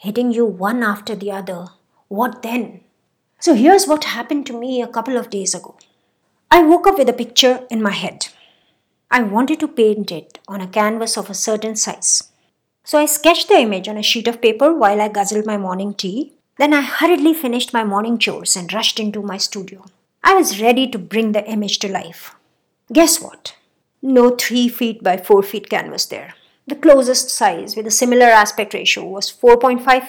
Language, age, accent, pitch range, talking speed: English, 50-69, Indian, 210-270 Hz, 195 wpm